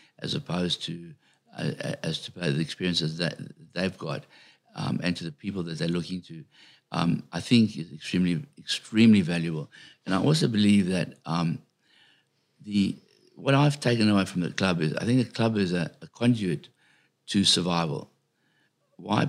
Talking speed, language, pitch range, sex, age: 165 wpm, English, 90-110 Hz, male, 60-79